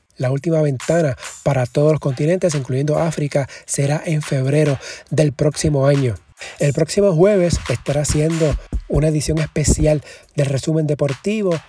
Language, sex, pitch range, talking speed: Spanish, male, 140-160 Hz, 135 wpm